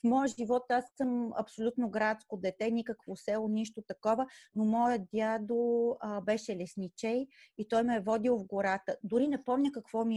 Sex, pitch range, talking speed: female, 205-260 Hz, 170 wpm